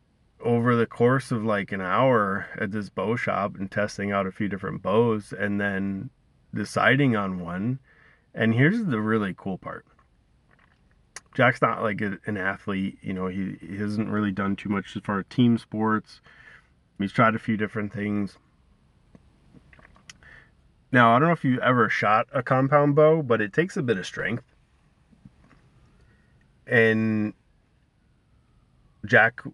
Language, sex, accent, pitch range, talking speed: English, male, American, 100-120 Hz, 150 wpm